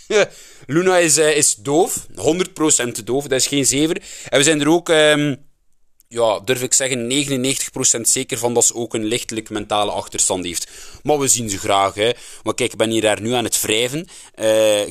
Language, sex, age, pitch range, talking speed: Dutch, male, 20-39, 120-155 Hz, 195 wpm